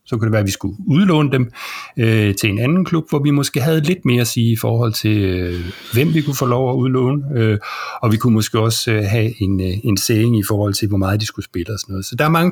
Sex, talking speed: male, 285 wpm